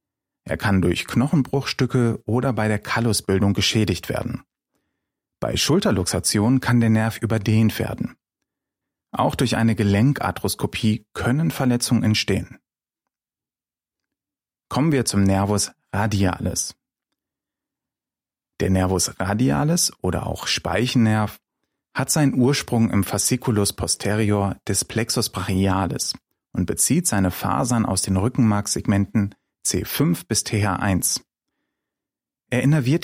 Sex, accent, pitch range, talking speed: male, German, 100-125 Hz, 100 wpm